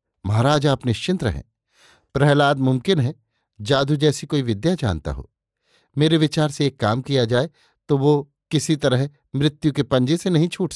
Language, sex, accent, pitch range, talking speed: Hindi, male, native, 120-155 Hz, 165 wpm